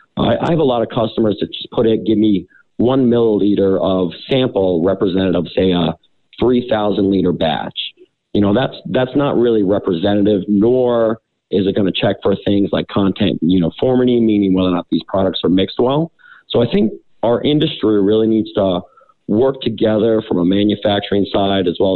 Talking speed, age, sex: 190 wpm, 40-59, male